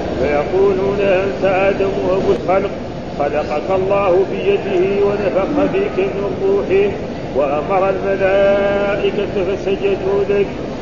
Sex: male